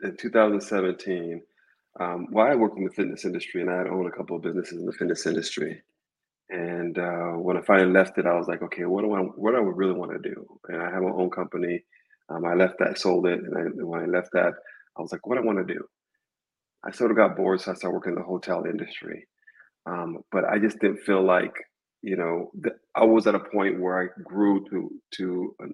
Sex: male